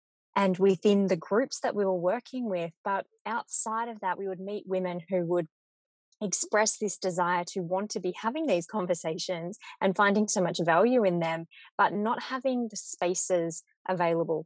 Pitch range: 175-205 Hz